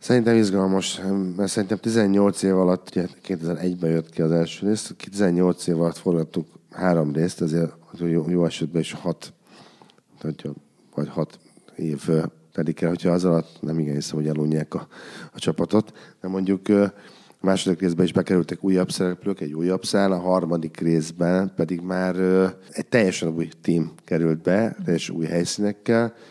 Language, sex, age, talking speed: English, male, 50-69, 150 wpm